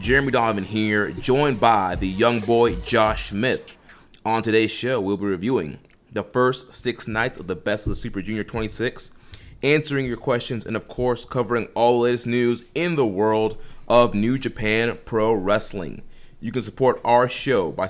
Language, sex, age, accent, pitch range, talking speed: English, male, 30-49, American, 110-125 Hz, 180 wpm